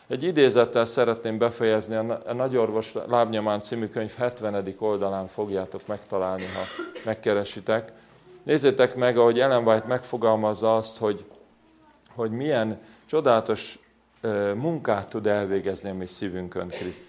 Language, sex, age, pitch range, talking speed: Hungarian, male, 40-59, 100-125 Hz, 110 wpm